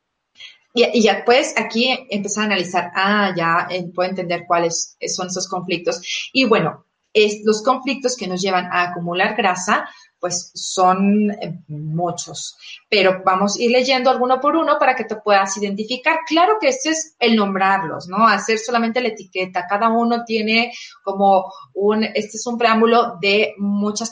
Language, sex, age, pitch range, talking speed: Spanish, female, 30-49, 185-230 Hz, 160 wpm